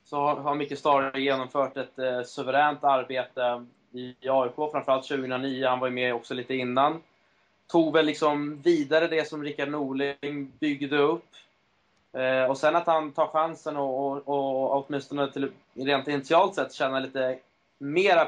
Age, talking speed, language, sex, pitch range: 20-39, 165 wpm, Swedish, male, 130-150 Hz